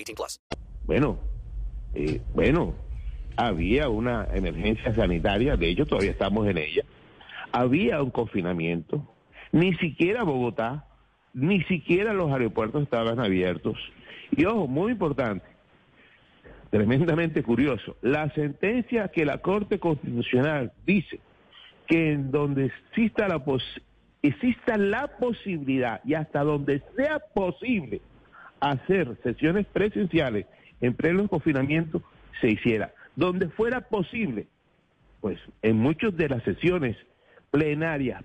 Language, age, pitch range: Spanish, 60-79, 120-190 Hz